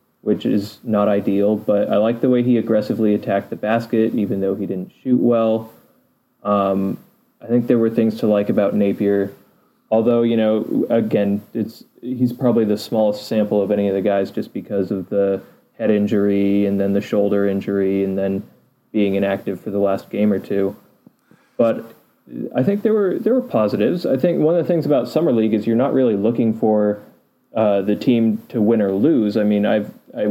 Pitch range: 100-115 Hz